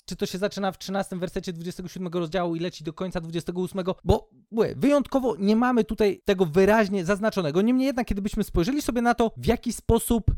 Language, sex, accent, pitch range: Polish, male, native, 180-235 Hz